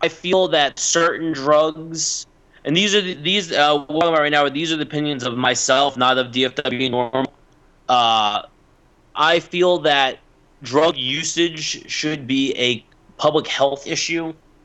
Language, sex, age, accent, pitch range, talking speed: English, male, 30-49, American, 120-140 Hz, 155 wpm